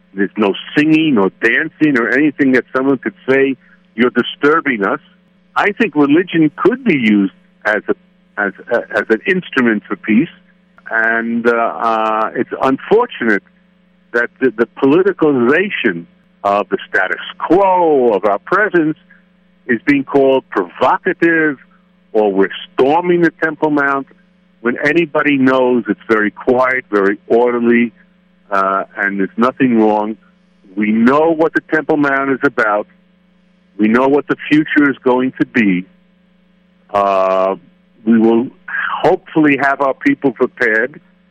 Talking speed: 135 wpm